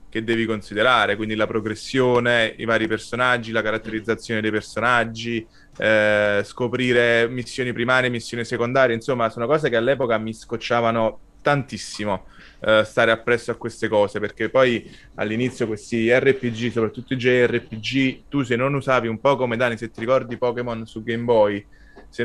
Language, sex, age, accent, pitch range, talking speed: Italian, male, 20-39, native, 110-130 Hz, 155 wpm